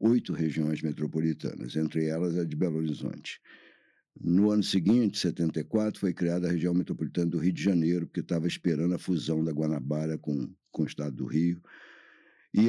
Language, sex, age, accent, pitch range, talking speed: Portuguese, male, 60-79, Brazilian, 80-100 Hz, 175 wpm